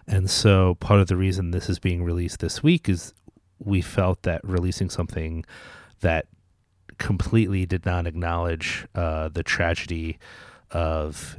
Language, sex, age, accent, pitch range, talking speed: English, male, 30-49, American, 85-105 Hz, 140 wpm